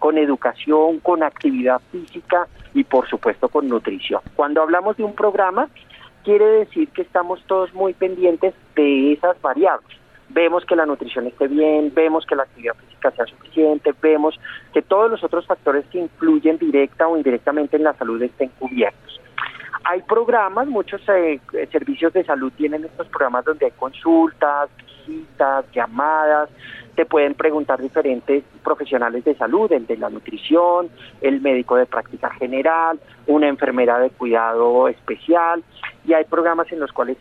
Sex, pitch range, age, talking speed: male, 135-175 Hz, 40-59, 155 wpm